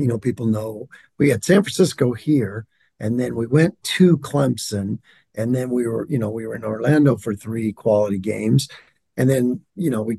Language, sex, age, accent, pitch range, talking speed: English, male, 50-69, American, 110-140 Hz, 200 wpm